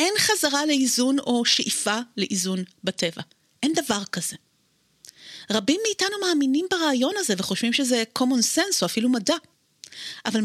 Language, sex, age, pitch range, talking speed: Hebrew, female, 30-49, 195-265 Hz, 125 wpm